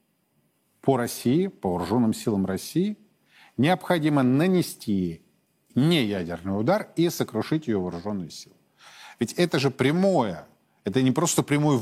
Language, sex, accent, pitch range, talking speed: Russian, male, native, 105-145 Hz, 115 wpm